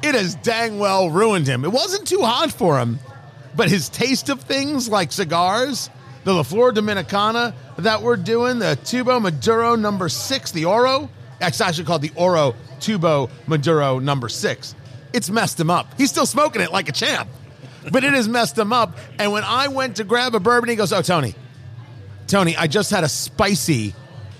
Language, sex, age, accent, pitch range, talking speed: English, male, 40-59, American, 135-215 Hz, 190 wpm